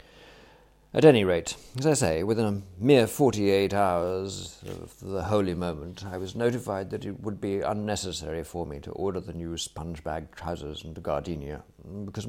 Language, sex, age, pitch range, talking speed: English, male, 50-69, 80-110 Hz, 170 wpm